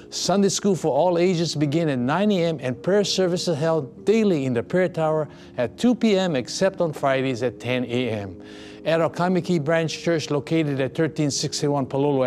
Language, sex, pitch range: English, male, 130-170 Hz